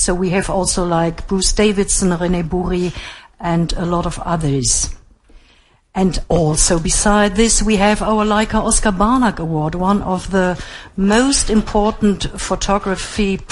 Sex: female